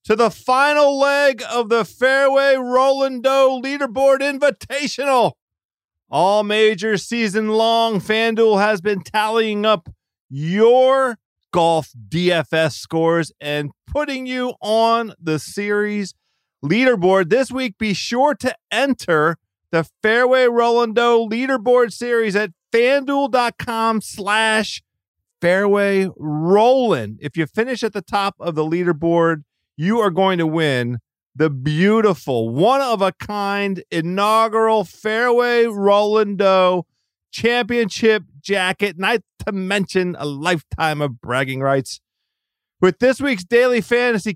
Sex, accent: male, American